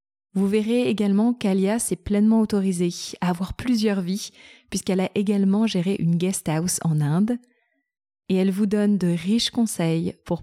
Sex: female